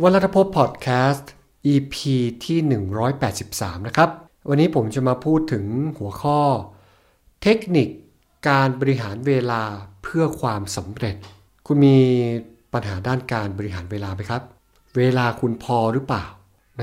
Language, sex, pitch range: Thai, male, 105-135 Hz